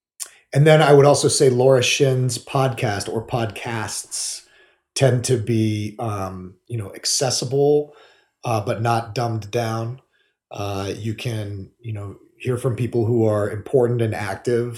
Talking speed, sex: 145 wpm, male